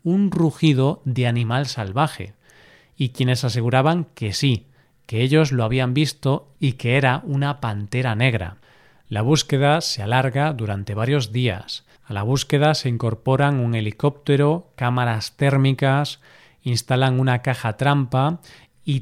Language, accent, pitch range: Spanish, Spanish, 120-150 Hz